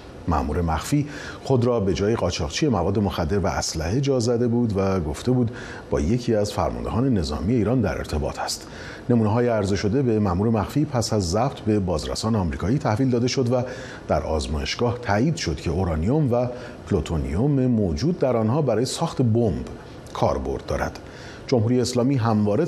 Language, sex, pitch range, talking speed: Persian, male, 85-125 Hz, 165 wpm